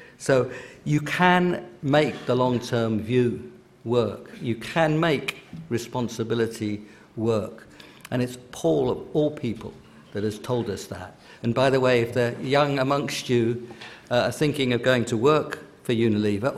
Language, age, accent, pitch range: English, 50-69, British, 115-135 Hz